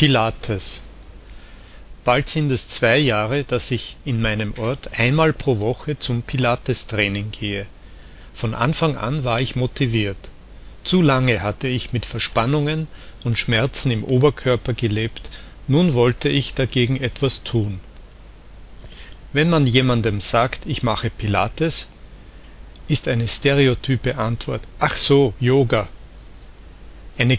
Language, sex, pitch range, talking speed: German, male, 110-140 Hz, 120 wpm